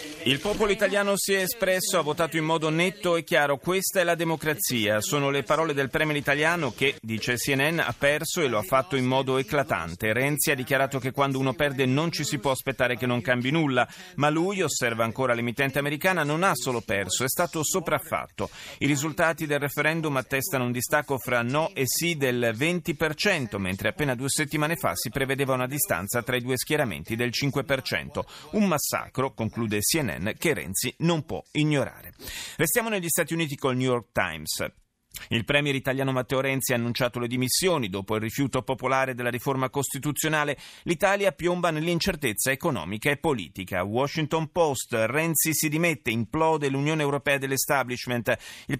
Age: 30-49